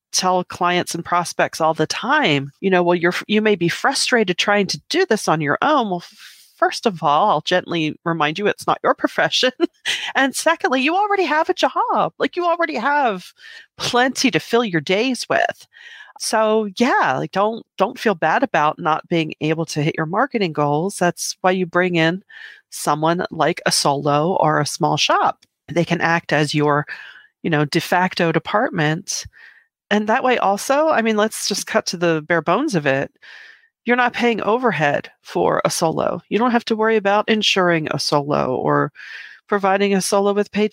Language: English